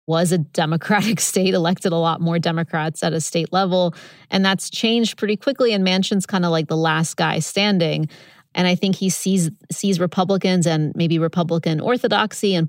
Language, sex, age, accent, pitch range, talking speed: English, female, 30-49, American, 165-190 Hz, 185 wpm